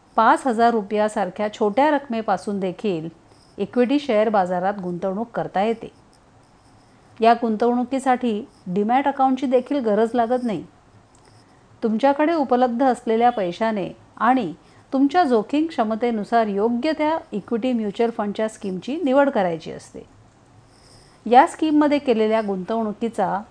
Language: Marathi